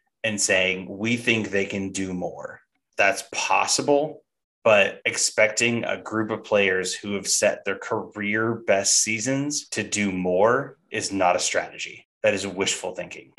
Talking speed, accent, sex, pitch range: 150 wpm, American, male, 95-110 Hz